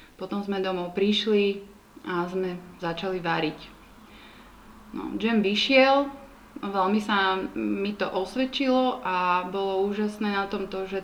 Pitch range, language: 190-210 Hz, Slovak